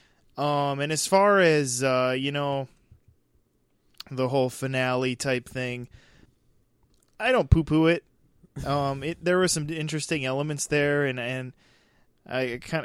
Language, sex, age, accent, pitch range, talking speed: English, male, 20-39, American, 125-155 Hz, 140 wpm